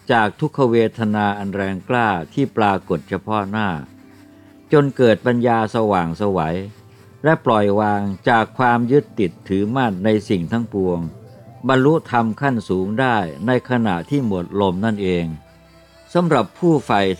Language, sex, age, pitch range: Thai, male, 60-79, 95-130 Hz